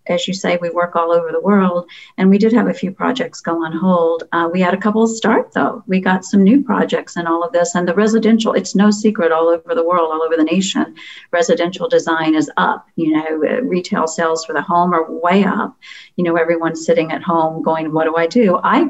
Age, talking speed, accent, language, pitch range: 50-69, 240 wpm, American, English, 170-230 Hz